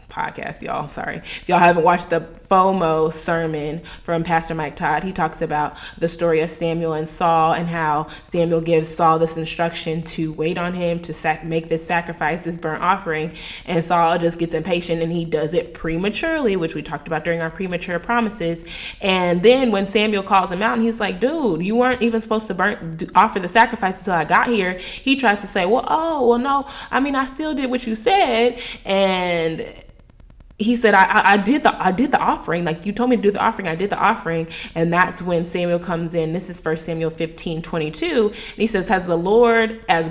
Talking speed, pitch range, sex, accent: 215 wpm, 165-205 Hz, female, American